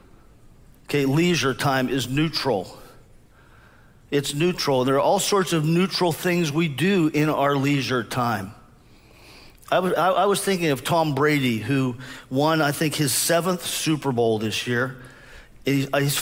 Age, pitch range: 40-59, 135-165 Hz